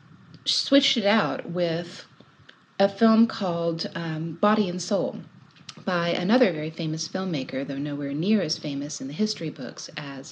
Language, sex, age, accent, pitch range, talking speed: English, female, 40-59, American, 145-180 Hz, 150 wpm